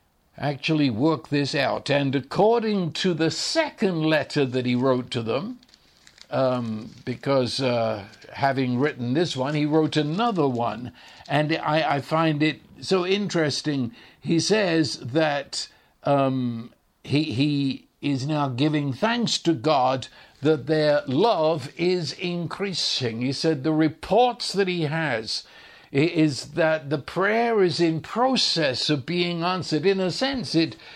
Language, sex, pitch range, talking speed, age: English, male, 135-175 Hz, 140 wpm, 60-79